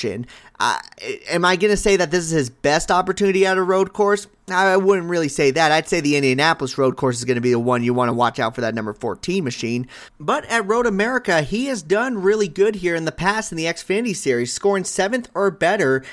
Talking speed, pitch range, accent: 240 wpm, 125-190 Hz, American